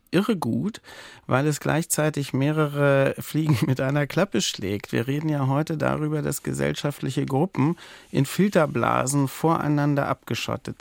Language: German